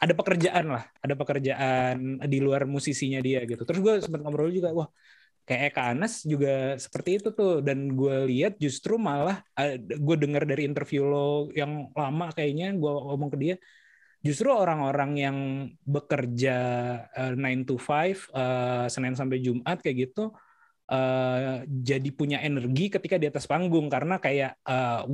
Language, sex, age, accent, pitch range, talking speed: Indonesian, male, 20-39, native, 135-165 Hz, 155 wpm